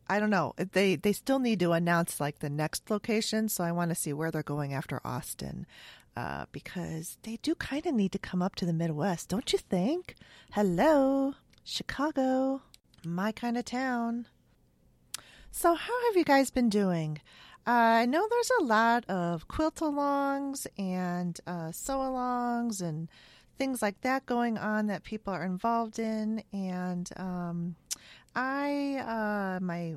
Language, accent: English, American